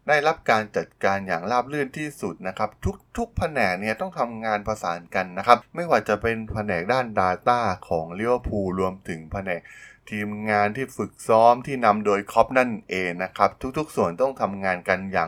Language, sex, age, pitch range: Thai, male, 20-39, 95-120 Hz